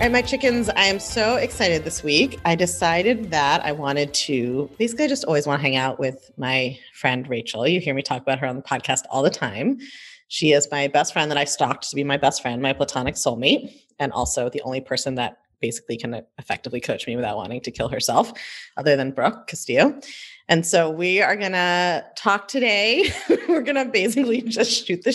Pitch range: 140-200 Hz